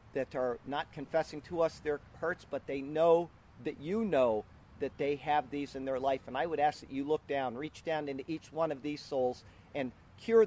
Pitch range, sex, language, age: 125-160 Hz, male, English, 50-69